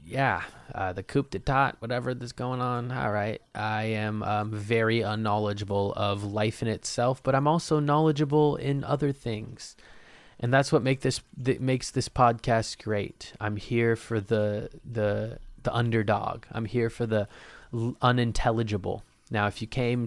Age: 20-39